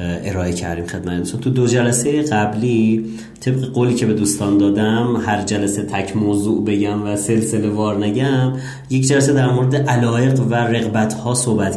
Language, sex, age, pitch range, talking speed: Persian, male, 30-49, 95-110 Hz, 155 wpm